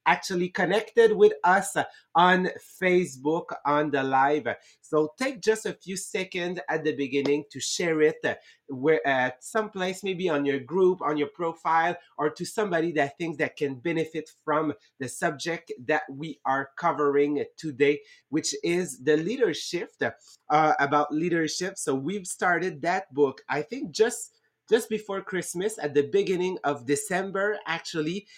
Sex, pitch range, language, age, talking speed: male, 145-185 Hz, English, 30-49, 150 wpm